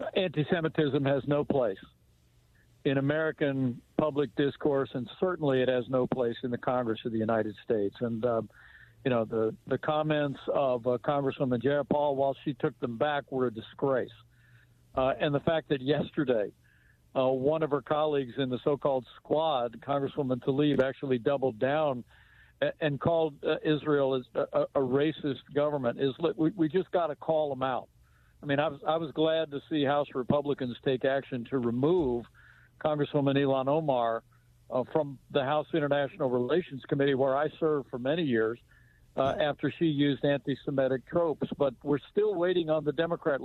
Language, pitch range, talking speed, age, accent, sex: English, 130-150 Hz, 170 wpm, 60-79, American, male